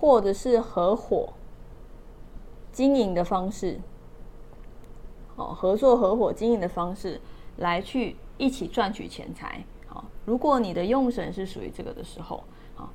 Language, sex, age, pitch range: Chinese, female, 20-39, 195-260 Hz